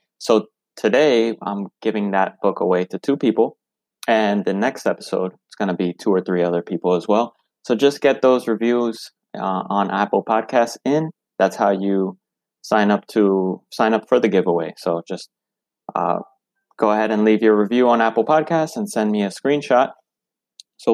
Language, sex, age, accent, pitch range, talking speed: English, male, 20-39, American, 100-130 Hz, 185 wpm